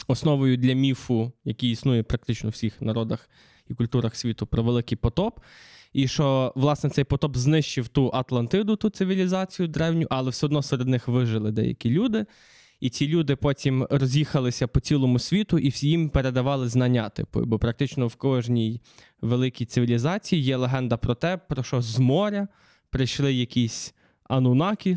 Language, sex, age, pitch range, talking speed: Ukrainian, male, 20-39, 125-170 Hz, 155 wpm